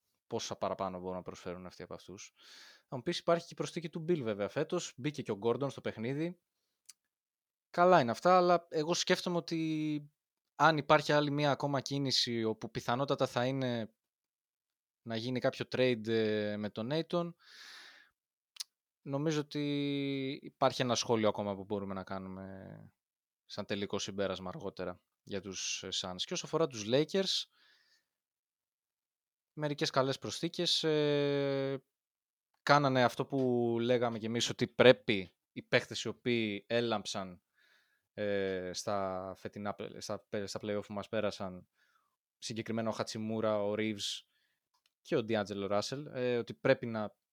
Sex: male